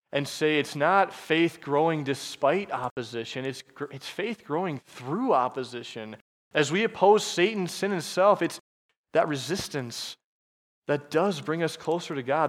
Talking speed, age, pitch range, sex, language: 150 wpm, 20-39, 130-165 Hz, male, English